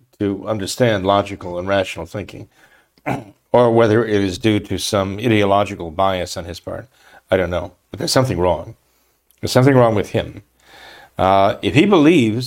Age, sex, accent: 50-69, male, American